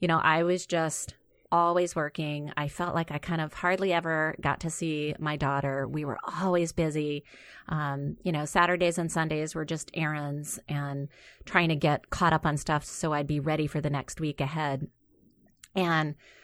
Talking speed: 185 wpm